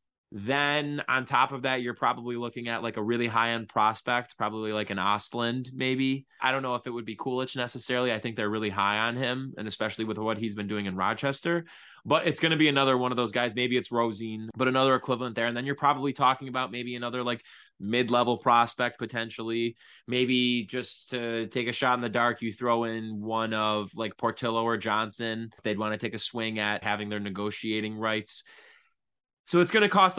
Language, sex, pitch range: English, male, 105-130 Hz